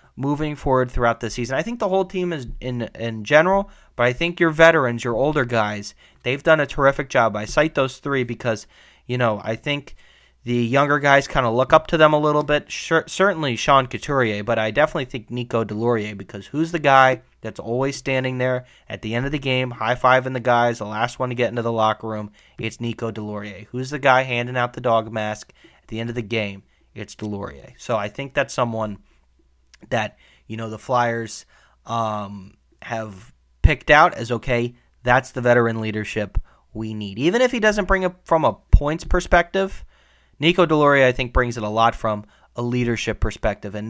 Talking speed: 205 wpm